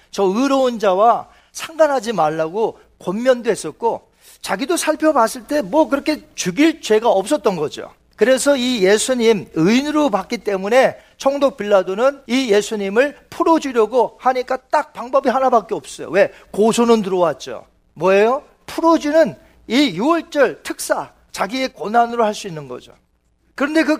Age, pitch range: 40-59, 205-290 Hz